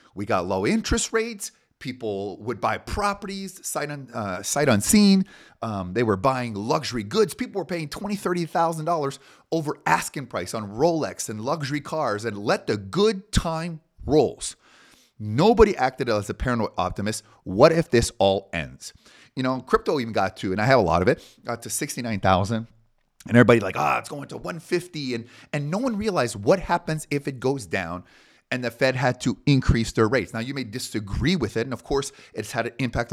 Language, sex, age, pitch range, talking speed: English, male, 30-49, 110-165 Hz, 190 wpm